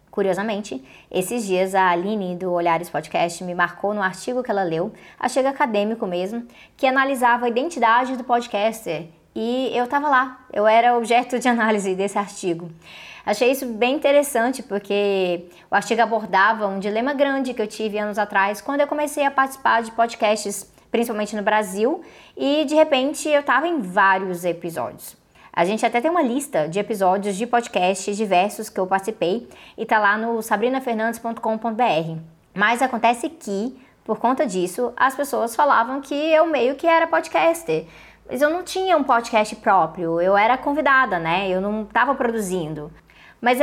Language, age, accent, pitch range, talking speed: Portuguese, 20-39, Brazilian, 195-270 Hz, 165 wpm